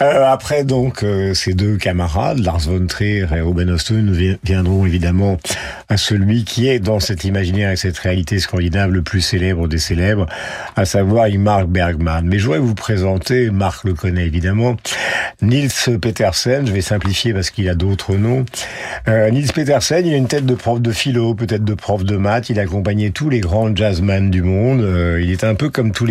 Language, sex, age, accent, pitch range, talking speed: French, male, 50-69, French, 95-120 Hz, 195 wpm